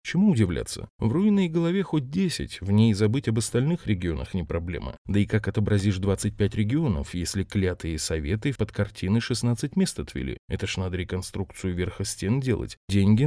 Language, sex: Russian, male